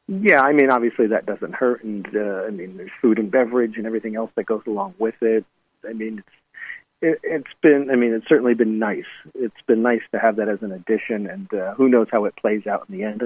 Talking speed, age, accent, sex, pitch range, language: 250 wpm, 40-59, American, male, 110-130 Hz, English